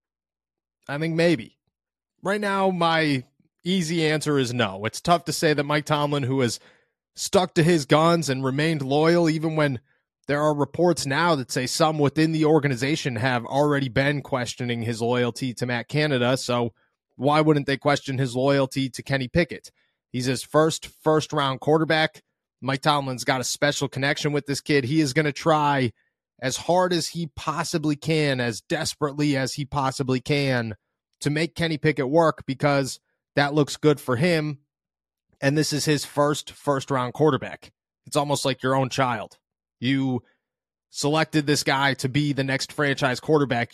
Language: English